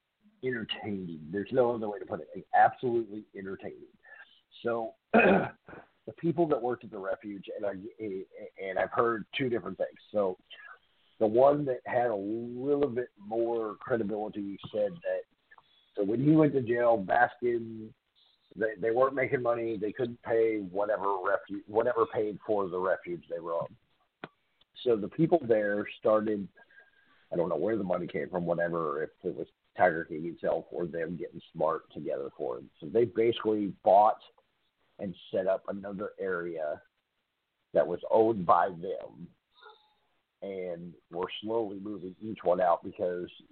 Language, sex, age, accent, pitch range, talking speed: English, male, 50-69, American, 105-165 Hz, 155 wpm